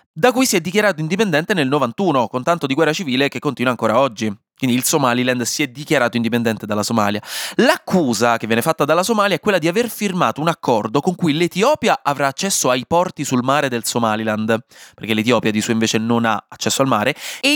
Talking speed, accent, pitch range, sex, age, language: 210 wpm, native, 125-190 Hz, male, 20-39, Italian